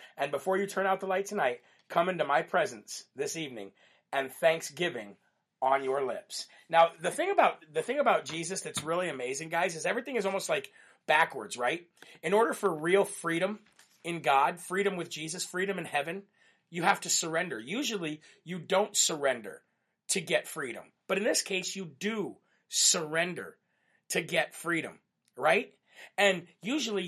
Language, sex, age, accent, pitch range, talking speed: English, male, 40-59, American, 160-195 Hz, 165 wpm